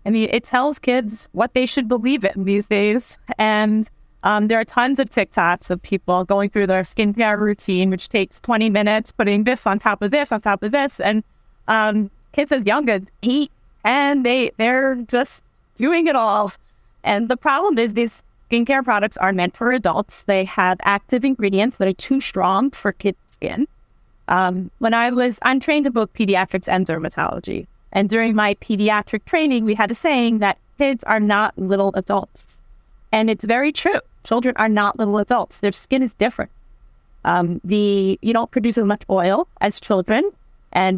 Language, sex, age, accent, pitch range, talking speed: English, female, 30-49, American, 190-235 Hz, 185 wpm